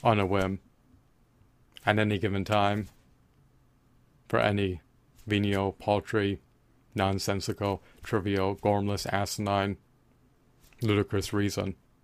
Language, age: English, 30-49